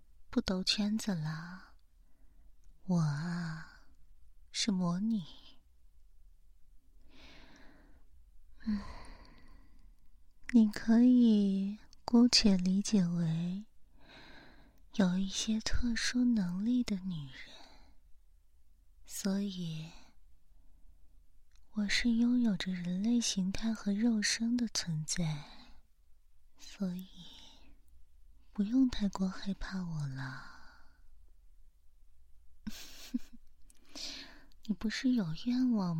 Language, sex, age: Chinese, female, 30-49